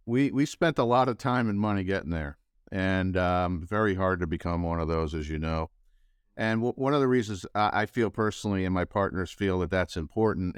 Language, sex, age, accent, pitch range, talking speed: English, male, 50-69, American, 90-110 Hz, 225 wpm